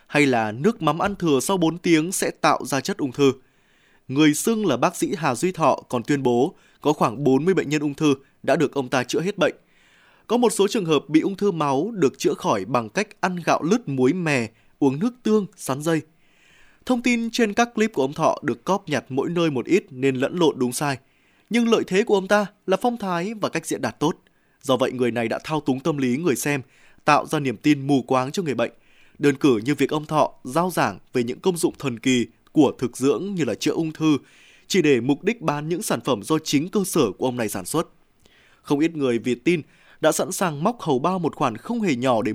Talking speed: 245 wpm